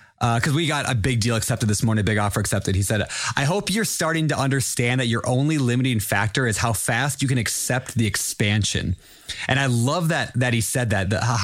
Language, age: English, 20-39